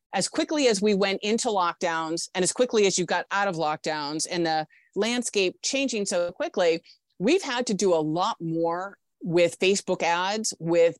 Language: English